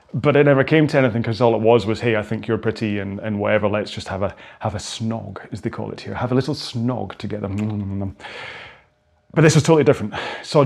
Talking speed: 240 wpm